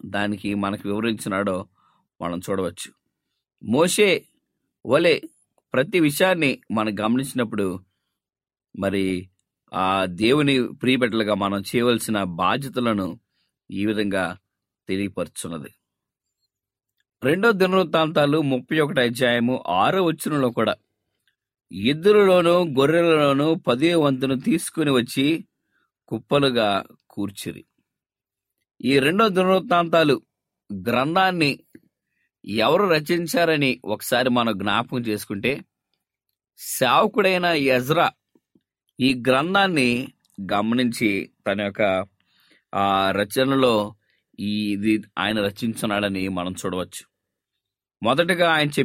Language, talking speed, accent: English, 70 wpm, Indian